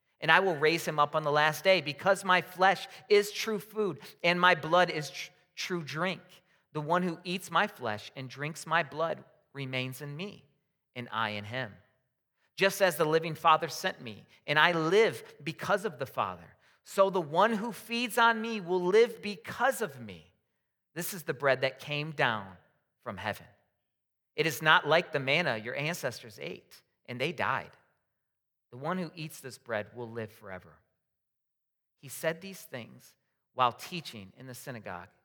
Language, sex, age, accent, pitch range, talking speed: English, male, 40-59, American, 125-180 Hz, 175 wpm